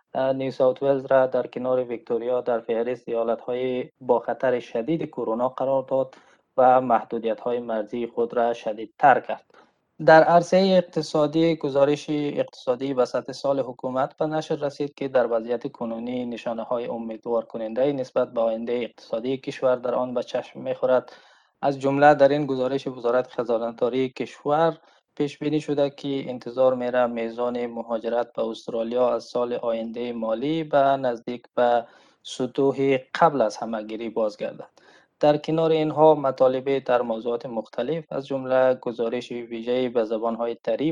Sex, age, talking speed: male, 20-39, 145 wpm